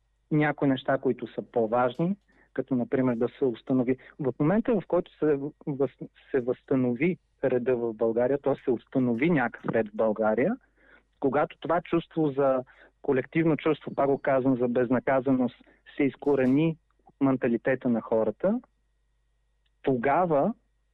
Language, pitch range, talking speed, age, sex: Bulgarian, 130-165 Hz, 130 wpm, 40-59, male